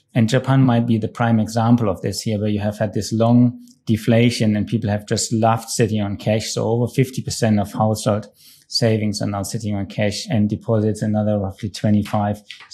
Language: English